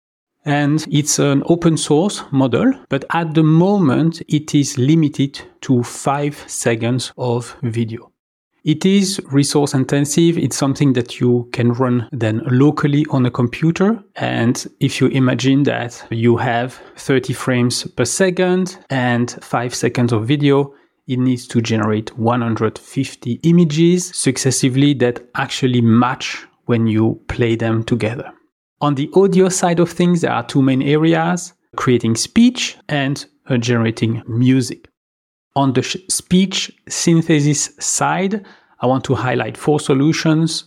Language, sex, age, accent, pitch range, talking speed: English, male, 40-59, French, 120-160 Hz, 135 wpm